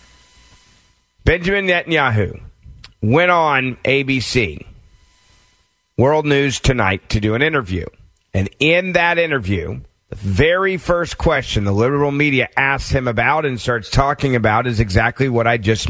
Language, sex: English, male